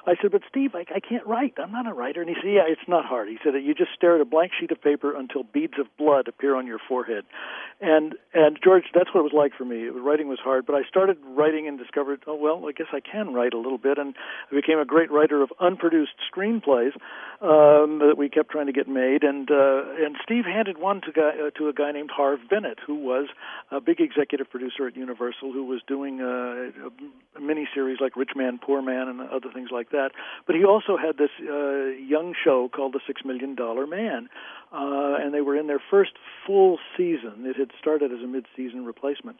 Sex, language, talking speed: male, English, 235 wpm